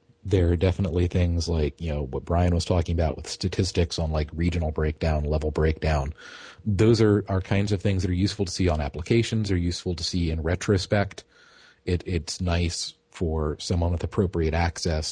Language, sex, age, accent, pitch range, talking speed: English, male, 40-59, American, 75-90 Hz, 185 wpm